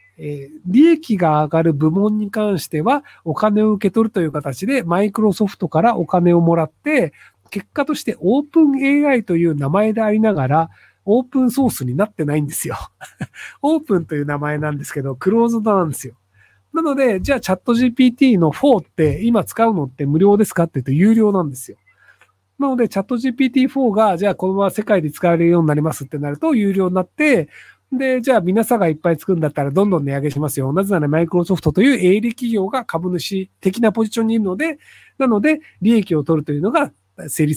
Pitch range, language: 155-235 Hz, Japanese